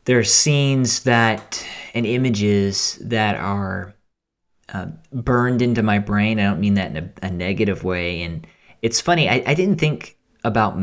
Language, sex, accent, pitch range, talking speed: English, male, American, 95-120 Hz, 165 wpm